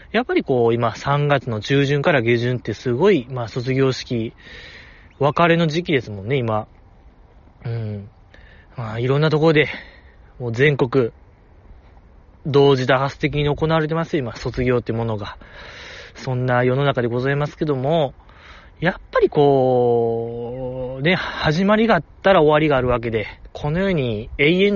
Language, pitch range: Japanese, 110-155 Hz